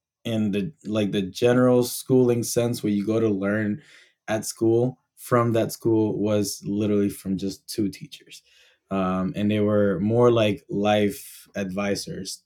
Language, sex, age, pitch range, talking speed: English, male, 20-39, 100-115 Hz, 150 wpm